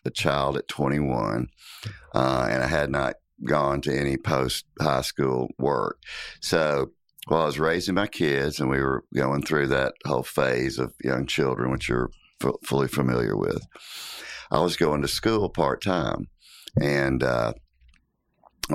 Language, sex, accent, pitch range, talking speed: English, male, American, 65-75 Hz, 160 wpm